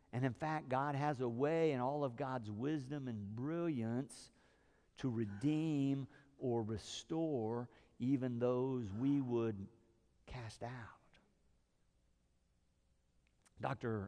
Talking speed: 105 wpm